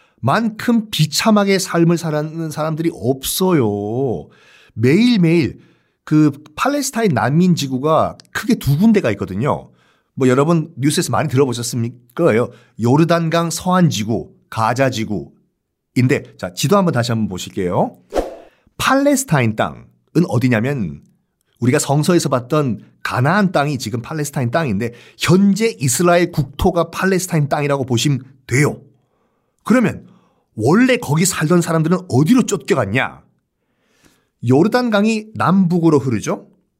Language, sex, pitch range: Korean, male, 130-195 Hz